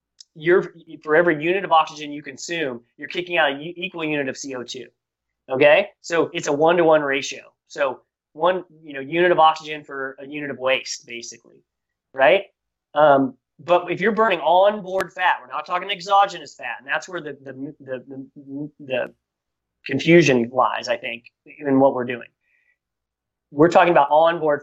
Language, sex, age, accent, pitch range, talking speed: English, male, 30-49, American, 135-165 Hz, 175 wpm